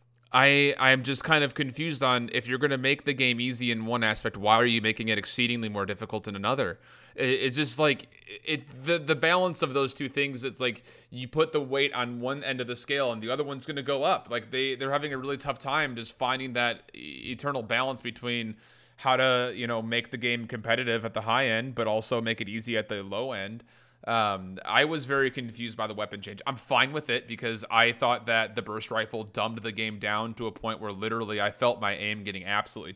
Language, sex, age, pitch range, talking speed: English, male, 30-49, 110-135 Hz, 235 wpm